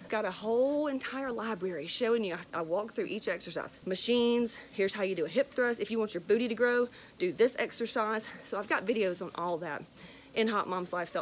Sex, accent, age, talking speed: female, American, 40-59, 220 wpm